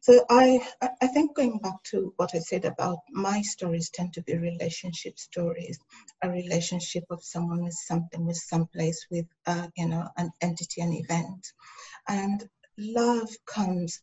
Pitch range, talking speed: 170-200 Hz, 165 wpm